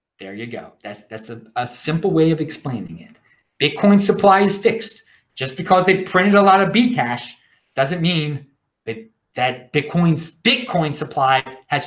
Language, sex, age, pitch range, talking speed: English, male, 30-49, 145-205 Hz, 165 wpm